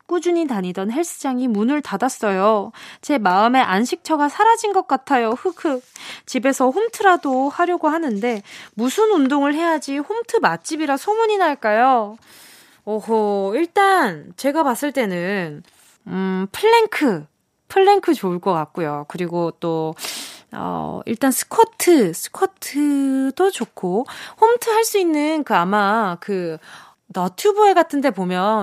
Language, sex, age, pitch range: Korean, female, 20-39, 200-330 Hz